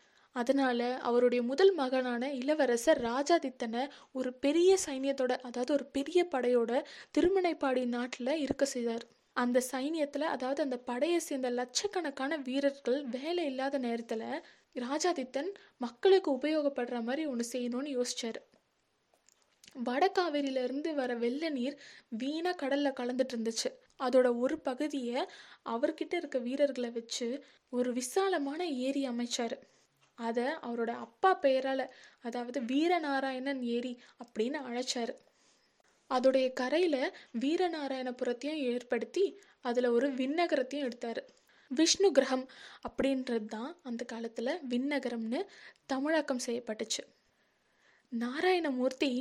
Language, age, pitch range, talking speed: Tamil, 20-39, 245-300 Hz, 100 wpm